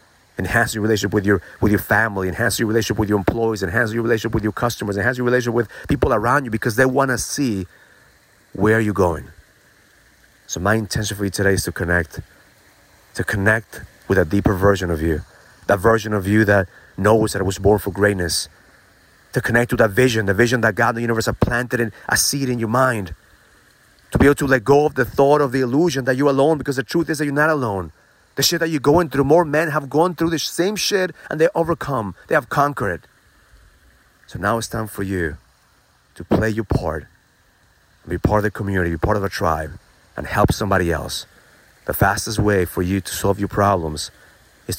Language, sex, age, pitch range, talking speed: English, male, 30-49, 95-120 Hz, 215 wpm